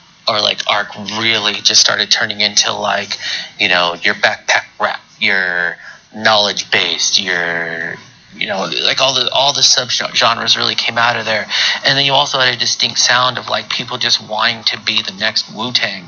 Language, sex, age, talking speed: English, male, 30-49, 180 wpm